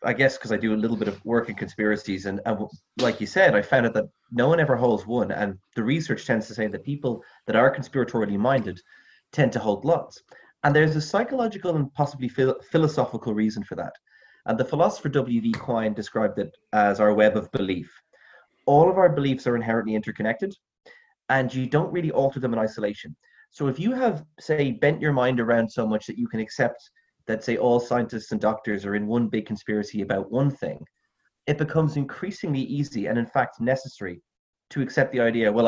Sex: male